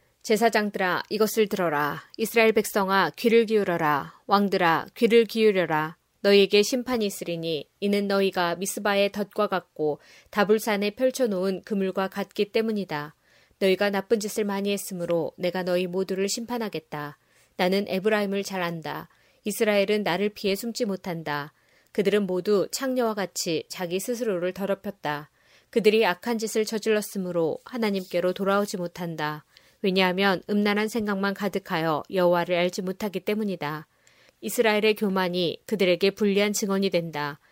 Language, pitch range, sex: Korean, 180-215 Hz, female